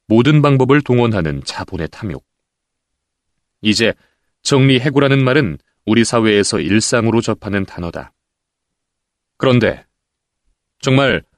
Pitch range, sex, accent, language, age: 95-135 Hz, male, native, Korean, 30-49